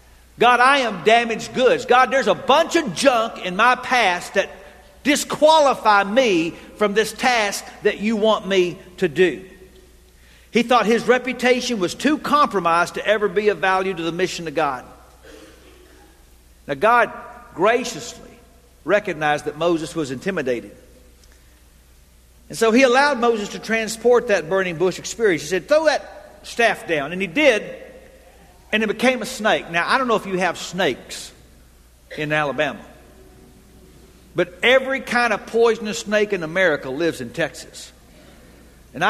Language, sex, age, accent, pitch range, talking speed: English, male, 50-69, American, 155-230 Hz, 150 wpm